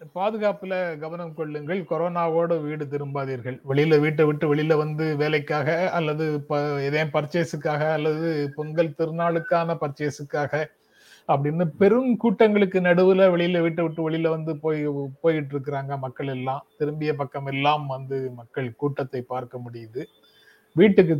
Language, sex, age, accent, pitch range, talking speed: Tamil, male, 30-49, native, 145-170 Hz, 115 wpm